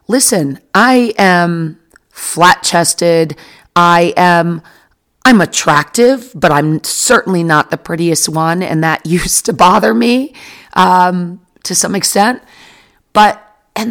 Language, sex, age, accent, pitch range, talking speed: English, female, 40-59, American, 160-215 Hz, 120 wpm